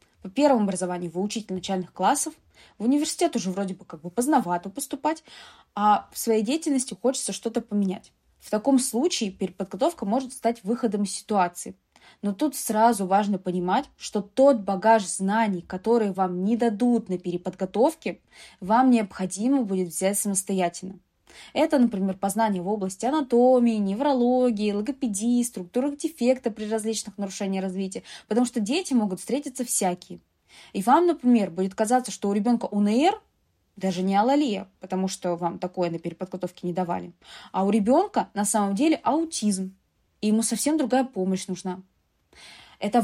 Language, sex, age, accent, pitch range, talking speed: Russian, female, 20-39, native, 190-245 Hz, 150 wpm